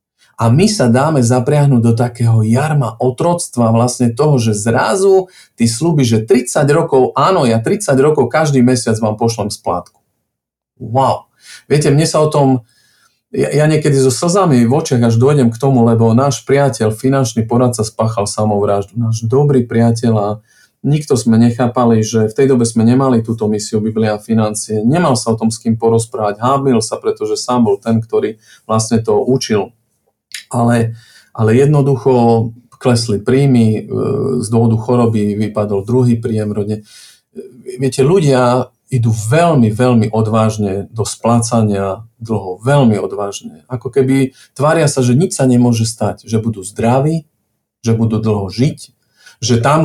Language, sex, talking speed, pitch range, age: Slovak, male, 150 wpm, 110-135 Hz, 40-59